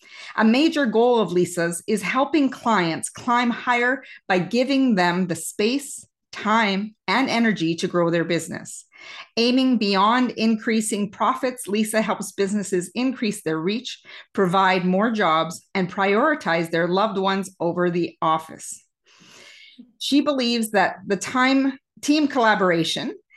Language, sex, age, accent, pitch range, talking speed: English, female, 40-59, American, 185-250 Hz, 130 wpm